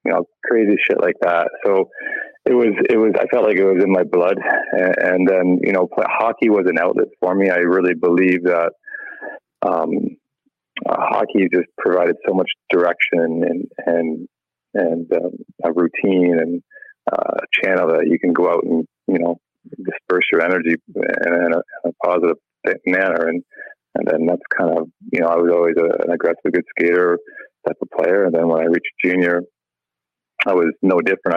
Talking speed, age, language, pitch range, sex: 180 wpm, 20-39, English, 80-95 Hz, male